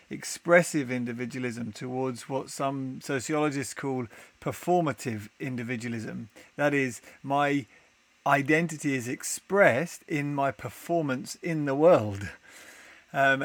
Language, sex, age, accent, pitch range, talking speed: English, male, 30-49, British, 125-150 Hz, 100 wpm